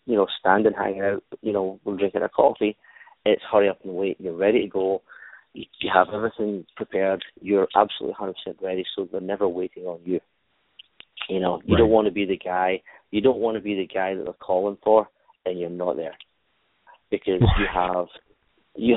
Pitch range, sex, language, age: 95-105 Hz, male, English, 30-49